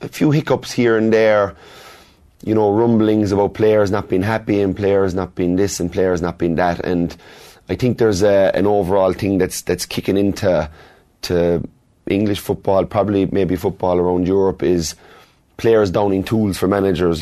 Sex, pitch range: male, 90-105 Hz